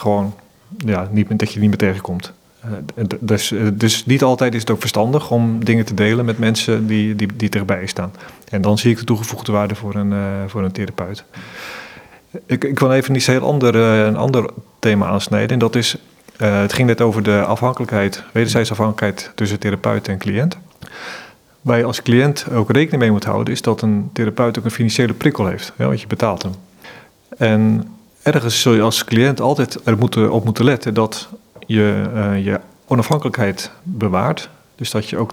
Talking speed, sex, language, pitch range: 185 wpm, male, Dutch, 105-125 Hz